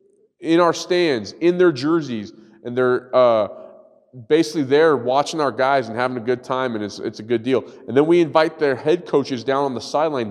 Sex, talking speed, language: male, 210 wpm, English